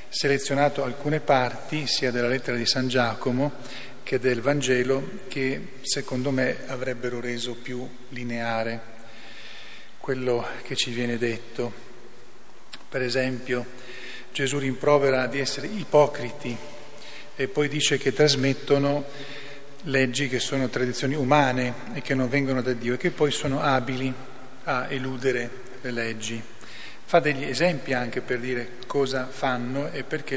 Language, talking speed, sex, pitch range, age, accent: Italian, 130 wpm, male, 120-140 Hz, 40-59, native